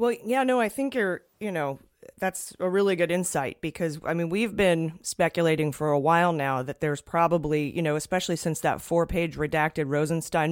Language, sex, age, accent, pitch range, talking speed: English, female, 30-49, American, 150-180 Hz, 195 wpm